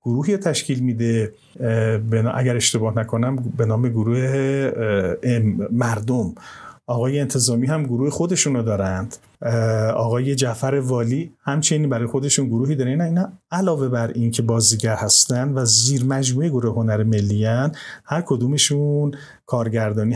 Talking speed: 120 wpm